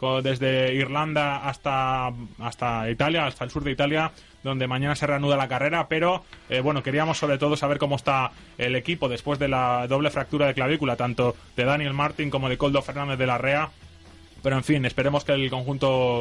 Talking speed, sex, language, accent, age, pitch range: 195 wpm, male, Spanish, Spanish, 20-39, 135-165 Hz